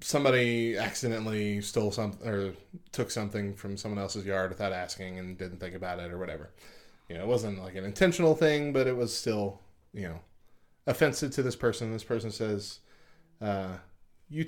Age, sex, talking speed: 20-39, male, 180 wpm